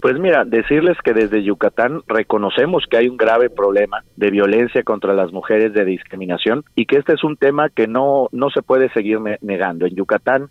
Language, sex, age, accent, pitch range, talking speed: Spanish, male, 40-59, Mexican, 105-135 Hz, 200 wpm